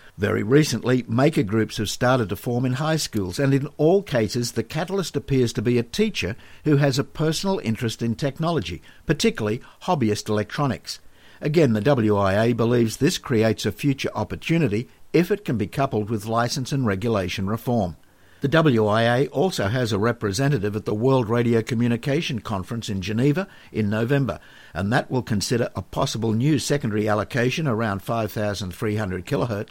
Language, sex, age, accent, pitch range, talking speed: English, male, 60-79, Australian, 110-140 Hz, 160 wpm